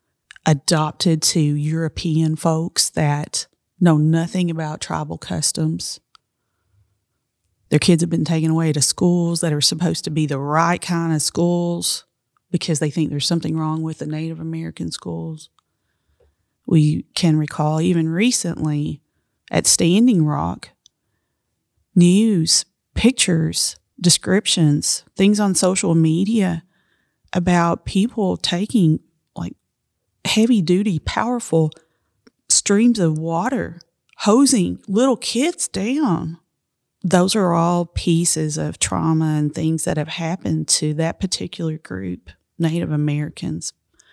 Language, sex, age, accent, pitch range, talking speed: English, female, 30-49, American, 150-180 Hz, 115 wpm